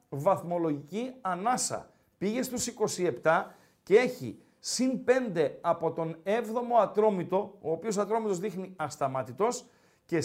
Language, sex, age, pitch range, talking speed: Greek, male, 50-69, 190-255 Hz, 110 wpm